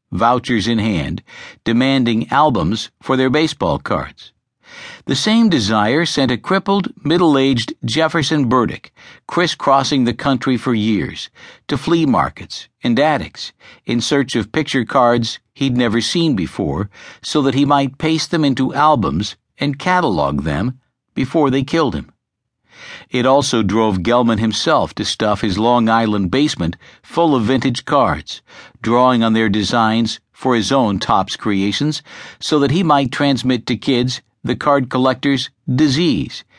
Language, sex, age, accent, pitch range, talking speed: English, male, 60-79, American, 115-145 Hz, 145 wpm